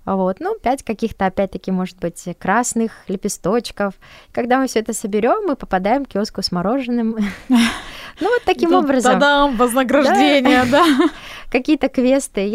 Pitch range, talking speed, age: 190-245 Hz, 140 wpm, 20-39